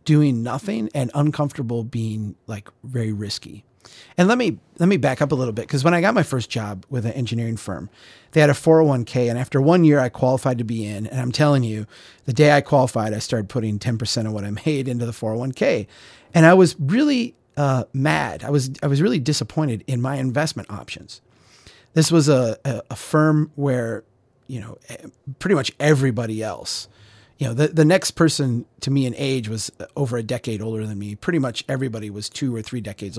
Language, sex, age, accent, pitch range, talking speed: English, male, 30-49, American, 115-150 Hz, 210 wpm